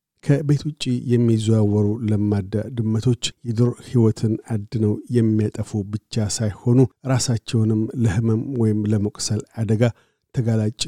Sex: male